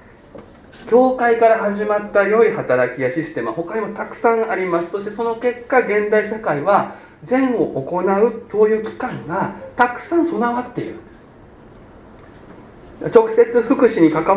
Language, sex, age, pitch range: Japanese, male, 40-59, 155-235 Hz